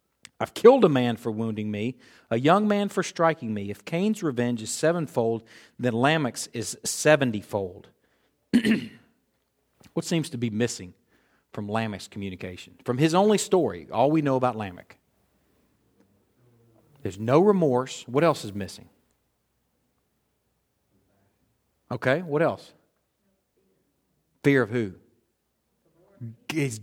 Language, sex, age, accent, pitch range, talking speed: English, male, 50-69, American, 110-155 Hz, 120 wpm